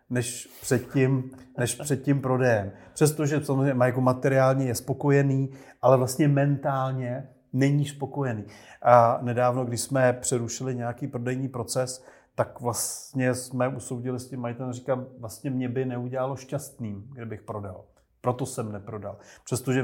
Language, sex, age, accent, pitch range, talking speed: Czech, male, 30-49, native, 115-130 Hz, 135 wpm